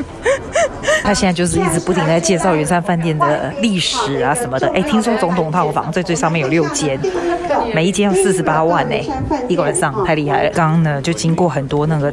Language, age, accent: Chinese, 30-49, native